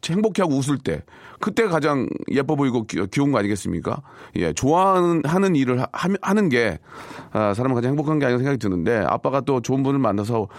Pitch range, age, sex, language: 100-145 Hz, 40-59, male, Korean